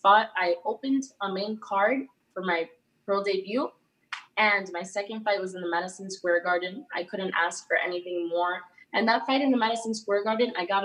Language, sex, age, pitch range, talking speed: English, female, 20-39, 190-230 Hz, 200 wpm